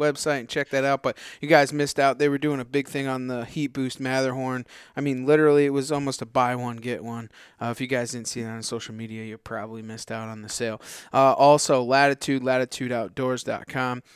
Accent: American